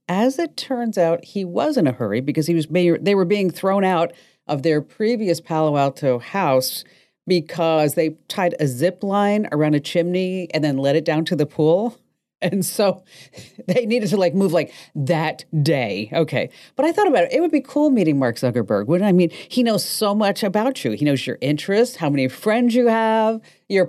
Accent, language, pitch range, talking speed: American, English, 160-230 Hz, 205 wpm